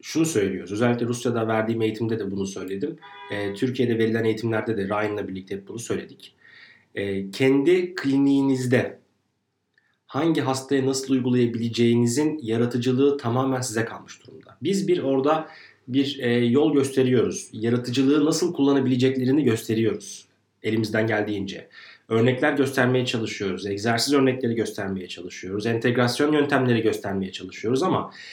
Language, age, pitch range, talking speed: Turkish, 30-49, 115-155 Hz, 110 wpm